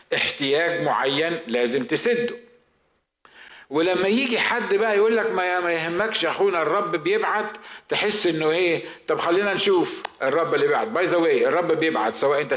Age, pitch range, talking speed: 50-69, 160-230 Hz, 135 wpm